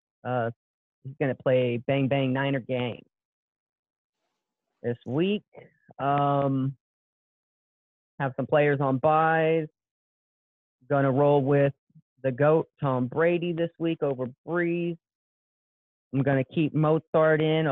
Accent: American